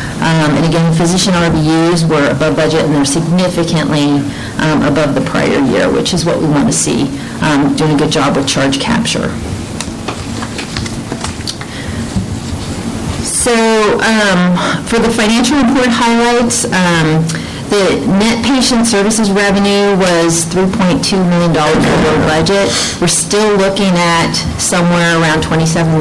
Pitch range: 150-180 Hz